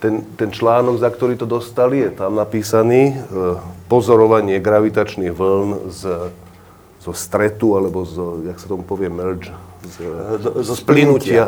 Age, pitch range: 40-59, 95-115 Hz